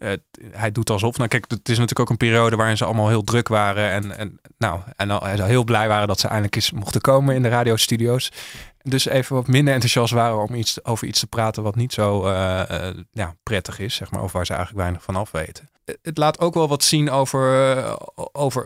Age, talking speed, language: 20-39, 245 wpm, Dutch